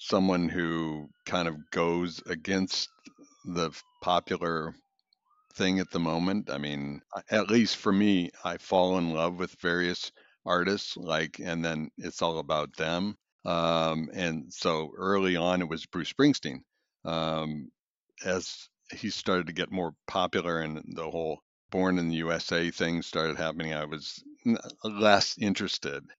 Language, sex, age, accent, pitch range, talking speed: English, male, 60-79, American, 80-95 Hz, 145 wpm